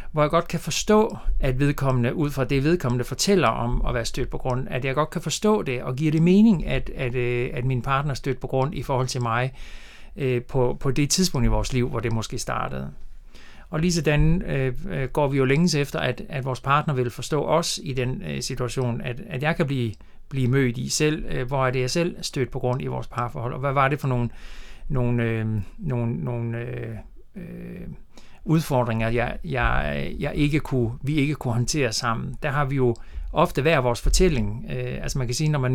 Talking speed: 215 wpm